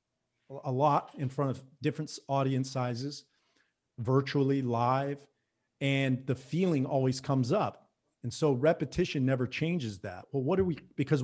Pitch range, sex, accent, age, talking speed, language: 120-140 Hz, male, American, 40-59, 145 wpm, English